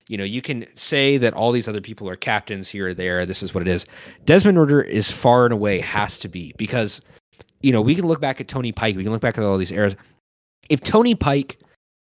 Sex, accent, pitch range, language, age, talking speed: male, American, 105-140 Hz, English, 20-39, 245 wpm